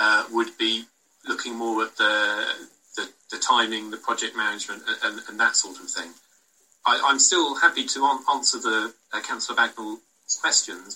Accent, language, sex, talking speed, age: British, English, male, 175 wpm, 40-59